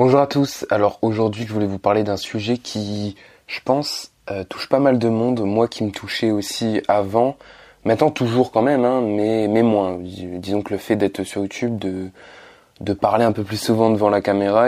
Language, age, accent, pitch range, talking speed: French, 20-39, French, 105-120 Hz, 215 wpm